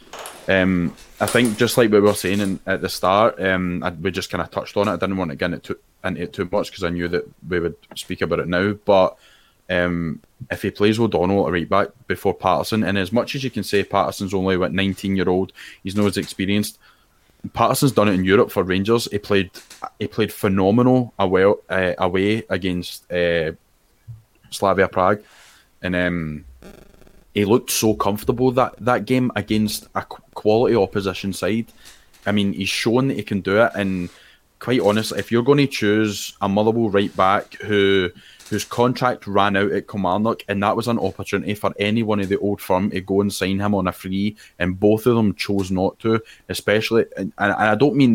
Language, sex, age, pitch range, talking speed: English, male, 20-39, 95-110 Hz, 210 wpm